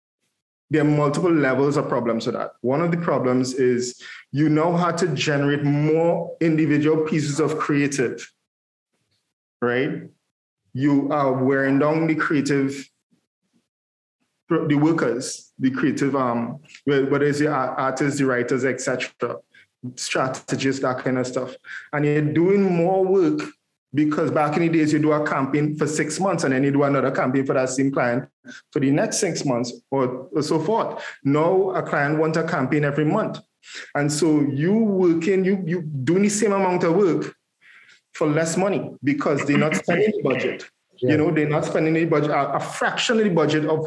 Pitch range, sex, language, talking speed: 135-160 Hz, male, English, 170 wpm